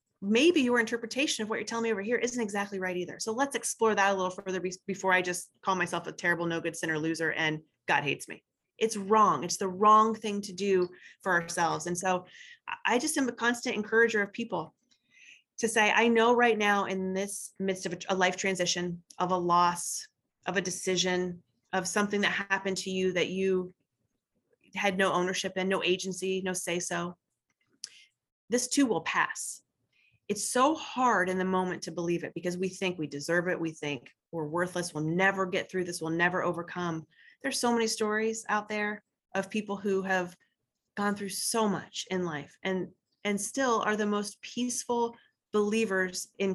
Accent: American